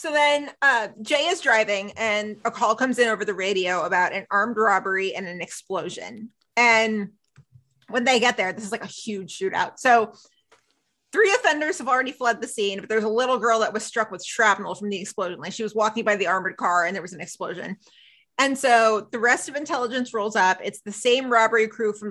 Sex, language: female, English